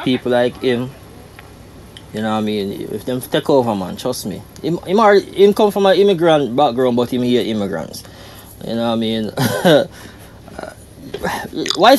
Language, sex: English, male